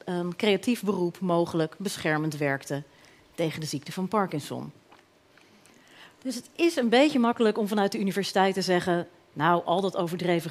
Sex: female